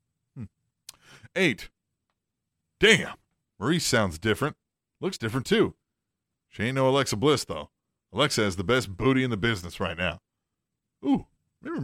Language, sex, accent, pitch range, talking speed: English, male, American, 110-150 Hz, 130 wpm